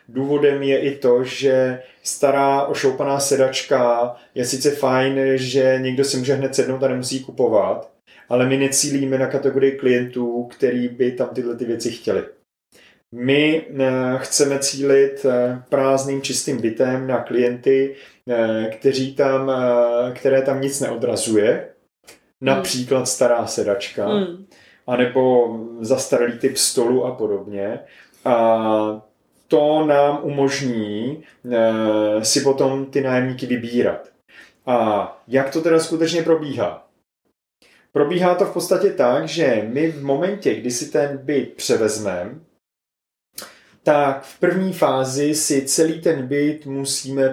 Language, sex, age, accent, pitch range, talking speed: Czech, male, 30-49, native, 125-145 Hz, 120 wpm